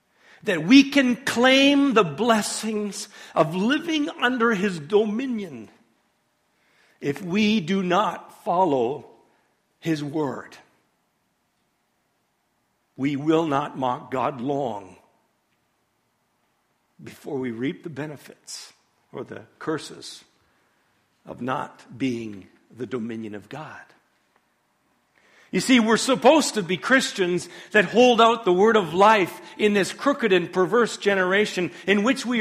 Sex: male